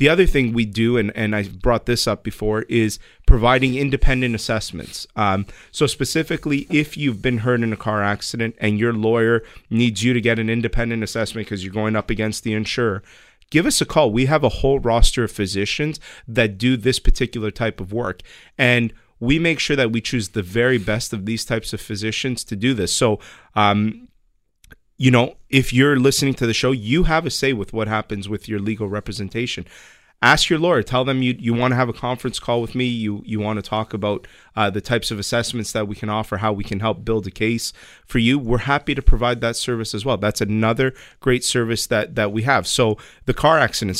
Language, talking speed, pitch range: English, 220 wpm, 110-130 Hz